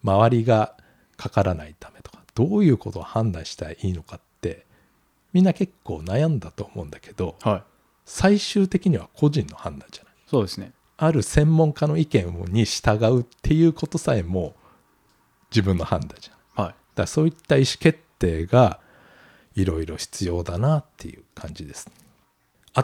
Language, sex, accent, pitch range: Japanese, male, native, 90-125 Hz